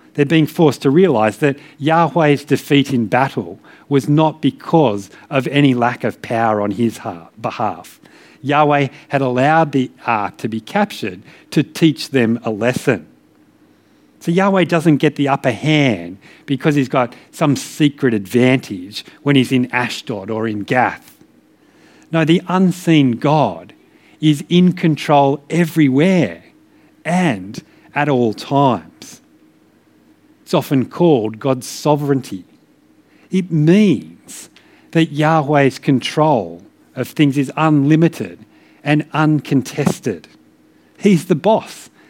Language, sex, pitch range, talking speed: English, male, 130-165 Hz, 120 wpm